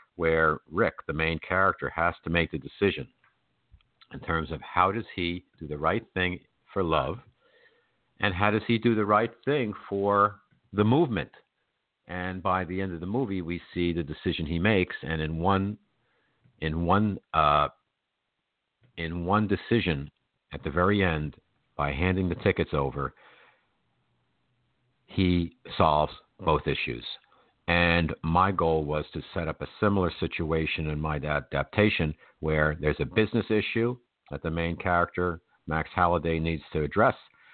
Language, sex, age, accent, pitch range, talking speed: English, male, 50-69, American, 80-100 Hz, 150 wpm